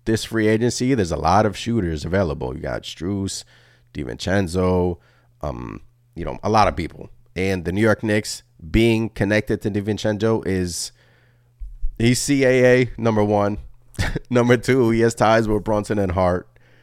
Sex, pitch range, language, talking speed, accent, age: male, 85-115 Hz, English, 155 wpm, American, 30-49